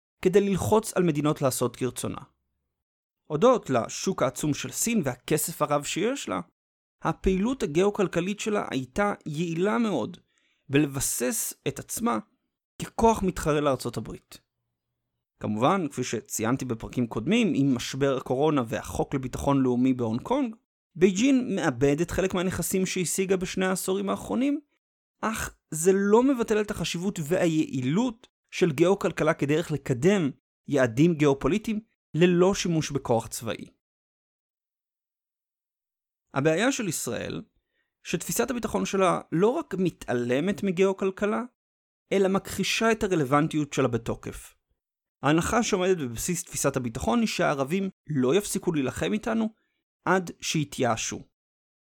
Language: Hebrew